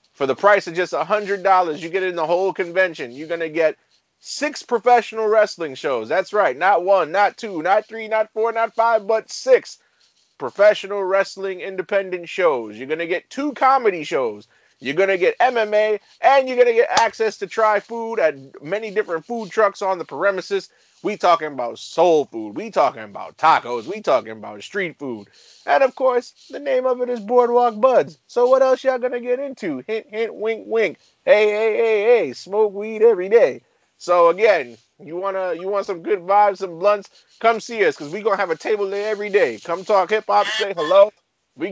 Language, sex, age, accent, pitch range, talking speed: English, male, 30-49, American, 195-250 Hz, 200 wpm